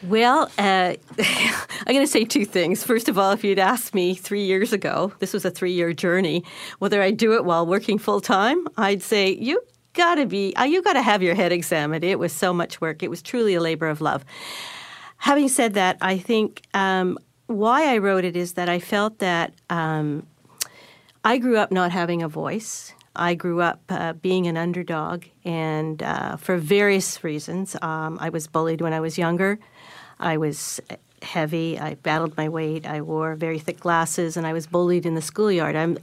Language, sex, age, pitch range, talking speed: English, female, 50-69, 165-205 Hz, 190 wpm